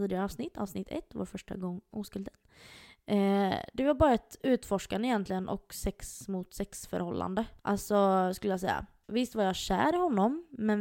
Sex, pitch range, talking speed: female, 190-230 Hz, 170 wpm